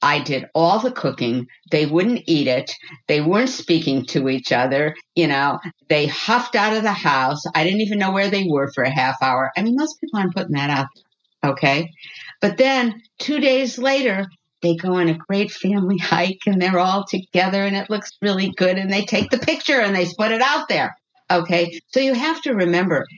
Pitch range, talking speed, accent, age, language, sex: 165-225 Hz, 210 wpm, American, 50-69, English, female